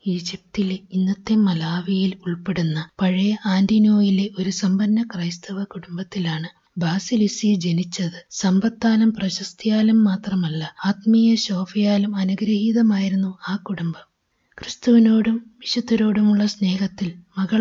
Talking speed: 80 wpm